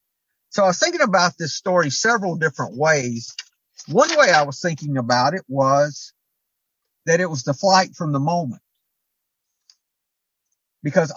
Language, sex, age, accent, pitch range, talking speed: English, male, 50-69, American, 140-175 Hz, 145 wpm